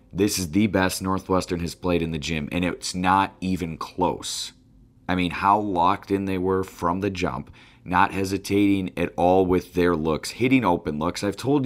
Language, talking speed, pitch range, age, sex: English, 190 wpm, 90-110 Hz, 30-49, male